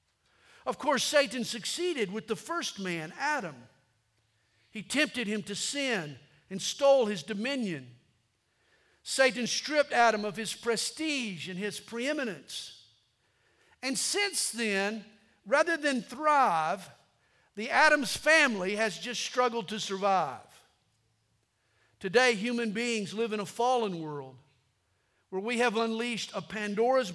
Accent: American